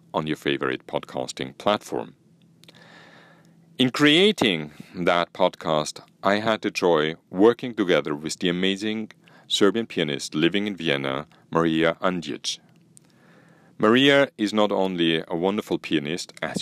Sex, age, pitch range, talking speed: male, 40-59, 80-125 Hz, 115 wpm